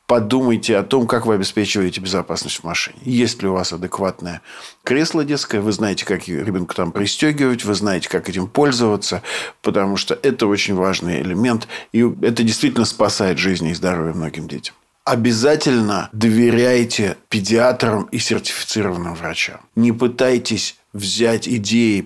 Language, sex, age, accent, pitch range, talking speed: Russian, male, 50-69, native, 100-120 Hz, 140 wpm